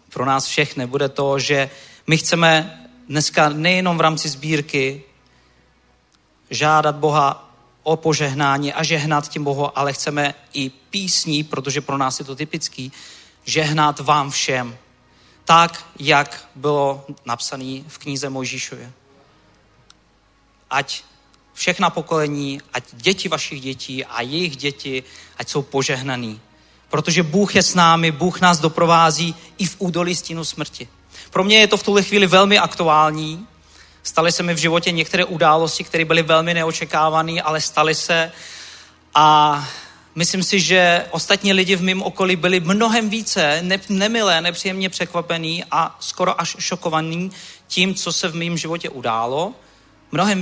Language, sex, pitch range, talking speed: Czech, male, 140-175 Hz, 140 wpm